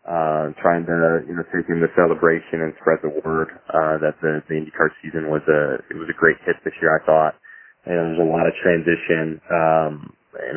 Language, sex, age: English, male, 20-39